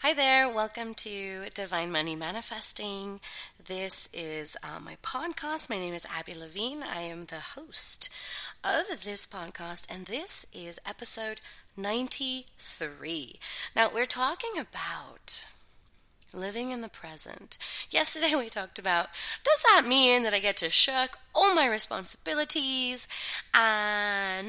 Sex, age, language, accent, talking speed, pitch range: female, 20-39, English, American, 130 wpm, 200-270 Hz